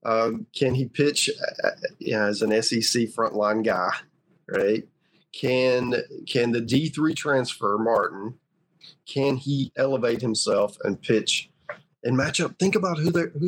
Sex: male